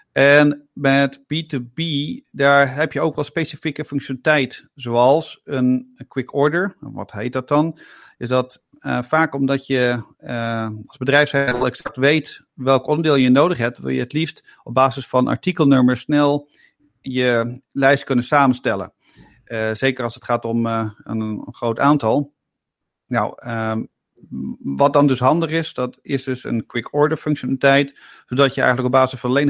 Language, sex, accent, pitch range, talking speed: Dutch, male, Dutch, 120-145 Hz, 160 wpm